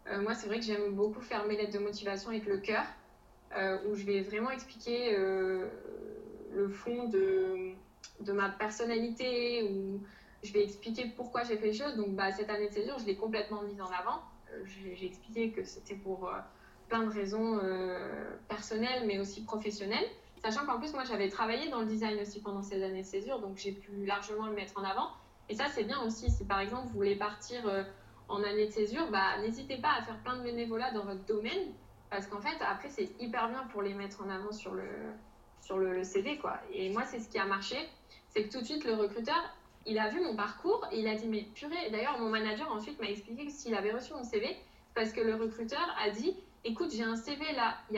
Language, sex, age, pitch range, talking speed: French, female, 20-39, 200-240 Hz, 230 wpm